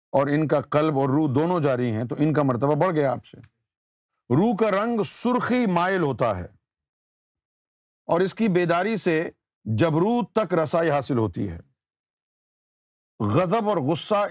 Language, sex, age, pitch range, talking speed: Urdu, male, 50-69, 115-175 Hz, 160 wpm